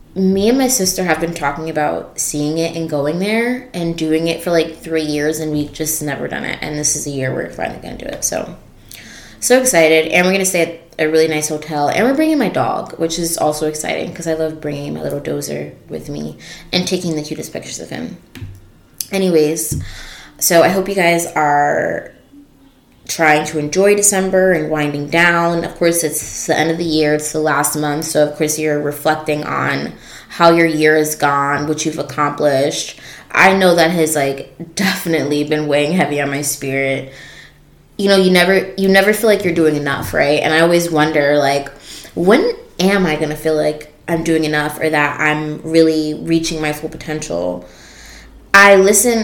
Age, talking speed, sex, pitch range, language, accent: 20-39, 200 wpm, female, 150-170 Hz, English, American